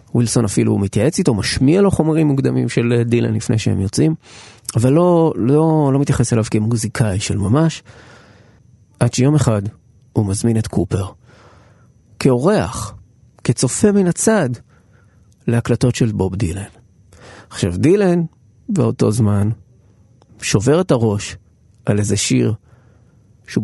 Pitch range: 110-145 Hz